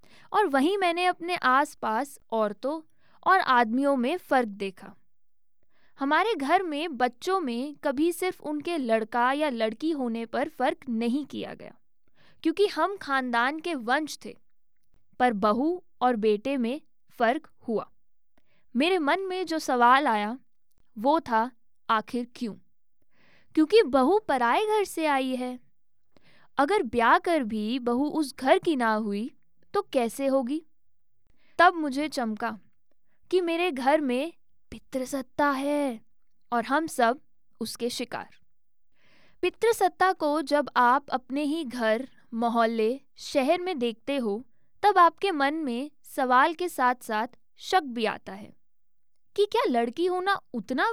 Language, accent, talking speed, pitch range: Hindi, native, 135 wpm, 235-325 Hz